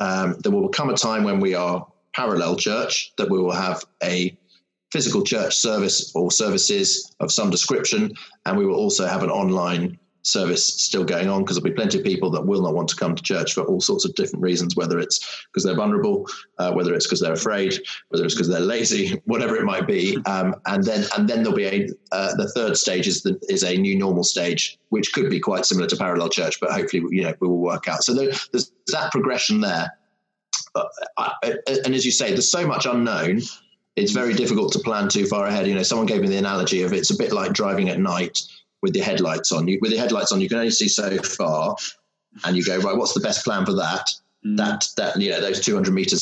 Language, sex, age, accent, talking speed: English, male, 30-49, British, 235 wpm